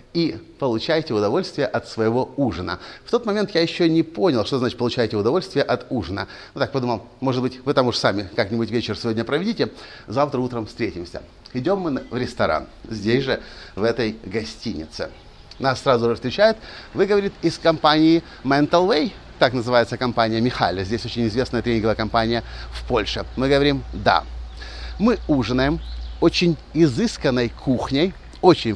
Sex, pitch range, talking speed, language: male, 110-165 Hz, 155 wpm, Russian